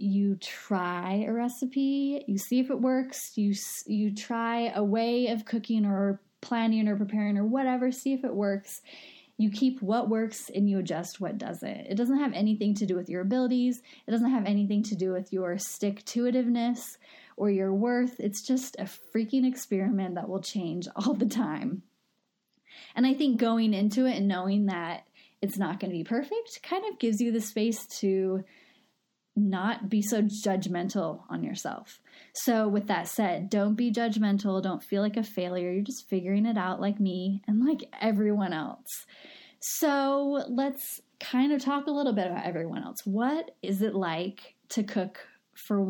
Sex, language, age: female, English, 10-29